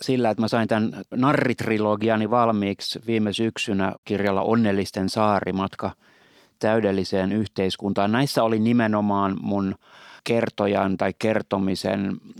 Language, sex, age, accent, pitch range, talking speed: Finnish, male, 30-49, native, 95-110 Hz, 100 wpm